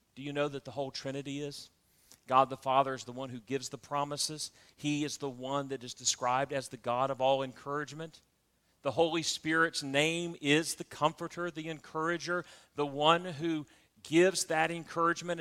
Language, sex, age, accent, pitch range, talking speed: English, male, 40-59, American, 140-200 Hz, 180 wpm